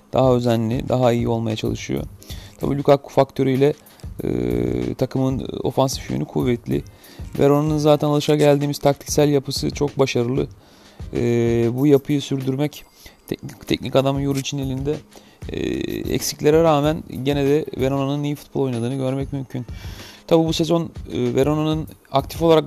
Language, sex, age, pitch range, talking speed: Turkish, male, 40-59, 120-150 Hz, 130 wpm